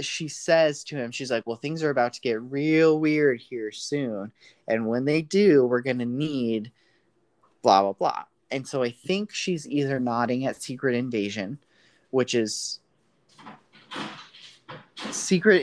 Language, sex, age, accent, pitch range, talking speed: English, male, 30-49, American, 115-145 Hz, 150 wpm